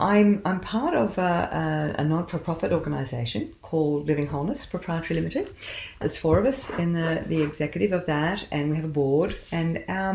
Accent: Australian